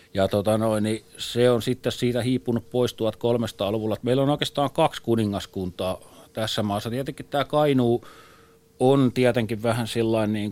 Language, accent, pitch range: Finnish, native, 100-125 Hz